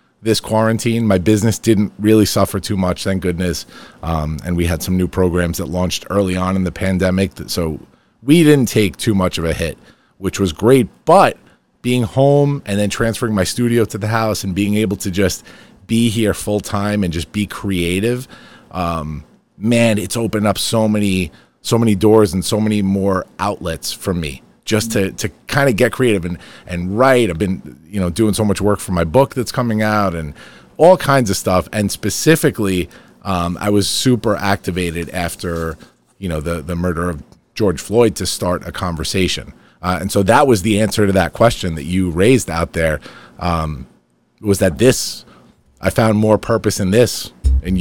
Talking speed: 190 wpm